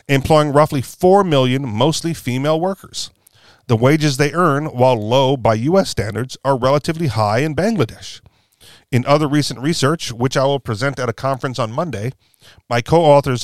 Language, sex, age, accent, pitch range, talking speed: English, male, 40-59, American, 120-145 Hz, 160 wpm